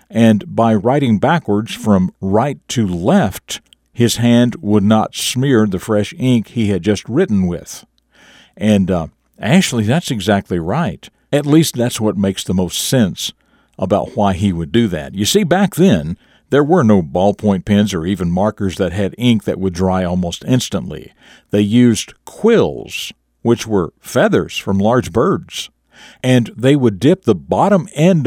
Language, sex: English, male